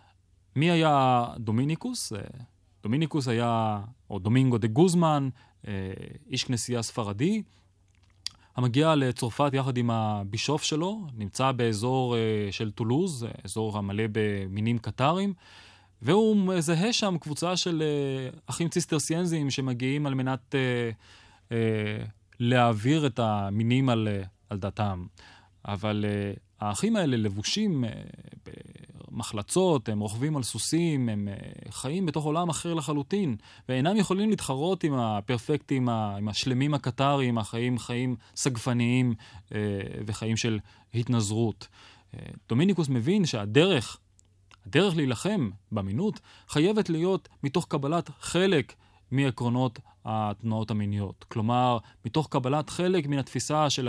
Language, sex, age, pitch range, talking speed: Hebrew, male, 20-39, 105-150 Hz, 100 wpm